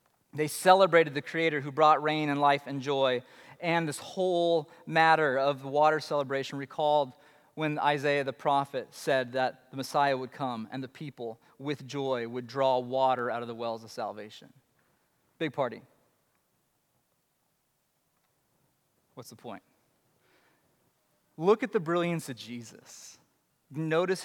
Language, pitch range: English, 145-185 Hz